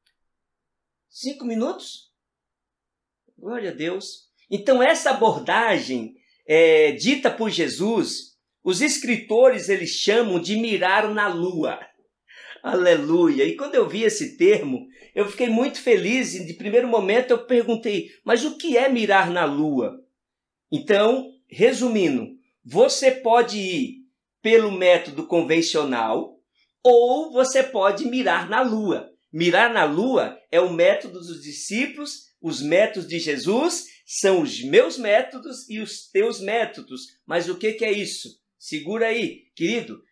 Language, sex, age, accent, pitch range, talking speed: Portuguese, male, 50-69, Brazilian, 200-265 Hz, 130 wpm